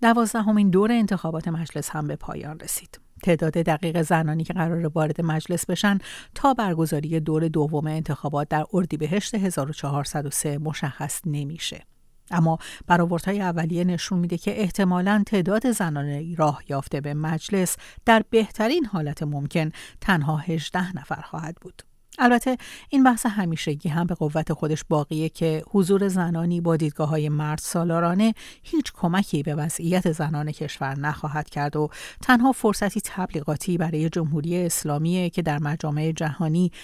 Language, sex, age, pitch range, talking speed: Persian, female, 50-69, 150-185 Hz, 135 wpm